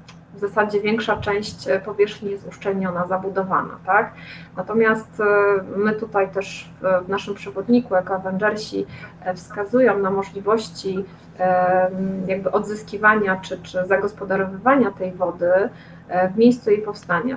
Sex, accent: female, native